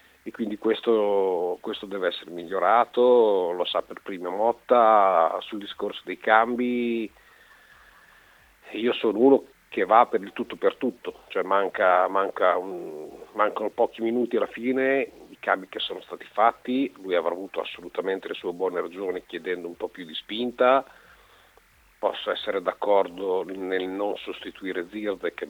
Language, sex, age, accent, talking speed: Italian, male, 50-69, native, 150 wpm